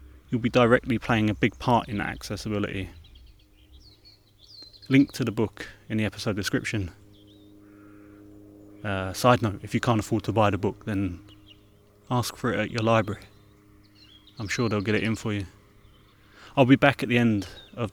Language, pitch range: English, 95-115 Hz